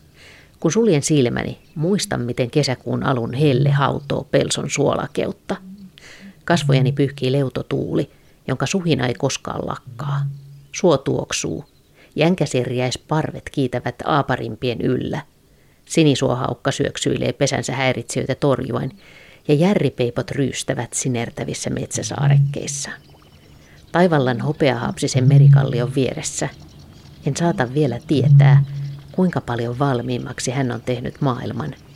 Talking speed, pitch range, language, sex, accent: 95 wpm, 125-150 Hz, Finnish, female, native